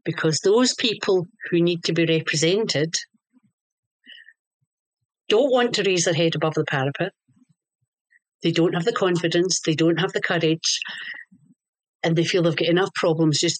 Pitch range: 165-220 Hz